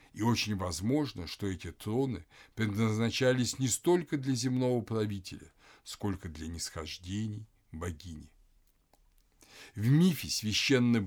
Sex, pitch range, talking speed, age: male, 95-130 Hz, 105 wpm, 60-79